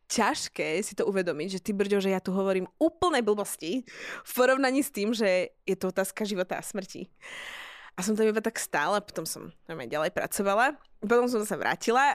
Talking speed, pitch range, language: 200 wpm, 185-245 Hz, Slovak